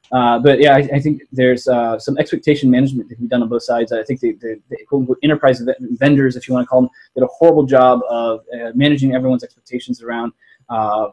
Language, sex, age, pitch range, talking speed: English, male, 20-39, 120-140 Hz, 215 wpm